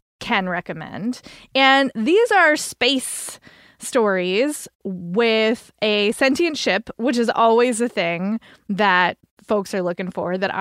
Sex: female